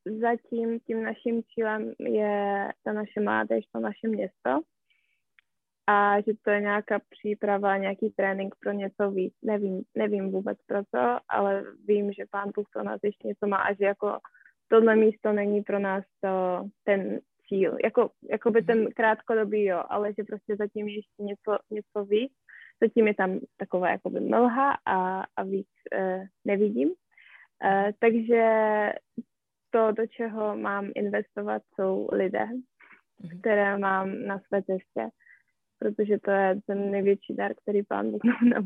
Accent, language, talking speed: native, Czech, 145 wpm